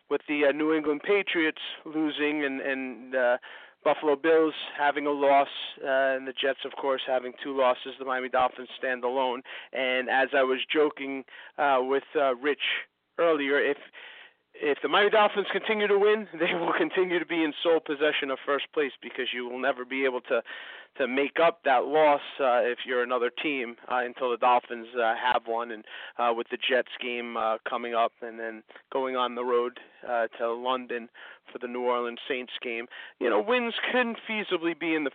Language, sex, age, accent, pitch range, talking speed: English, male, 30-49, American, 125-160 Hz, 195 wpm